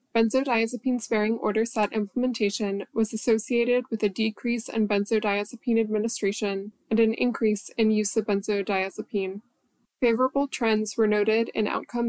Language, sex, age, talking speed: English, female, 10-29, 130 wpm